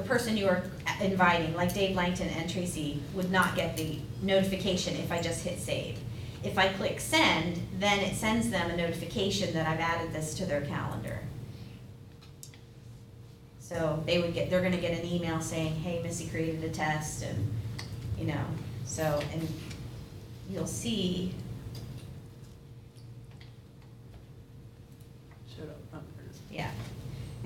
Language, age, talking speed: English, 30-49, 135 wpm